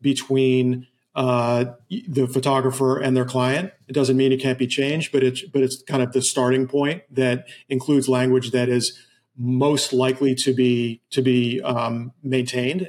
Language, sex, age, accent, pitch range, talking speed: English, male, 40-59, American, 125-140 Hz, 170 wpm